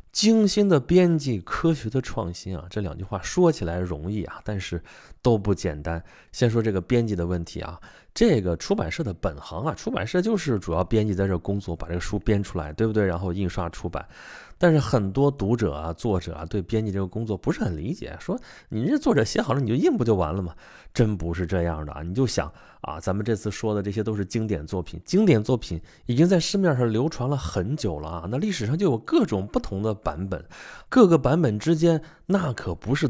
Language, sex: Chinese, male